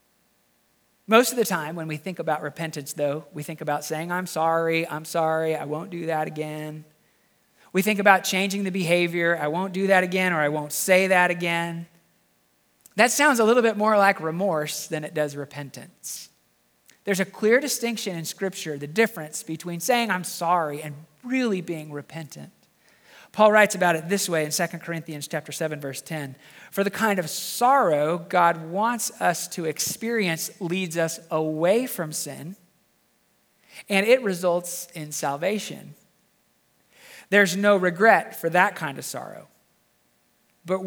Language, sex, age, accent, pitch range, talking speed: English, male, 40-59, American, 150-195 Hz, 160 wpm